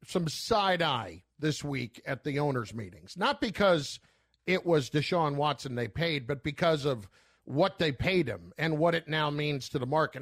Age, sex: 50-69, male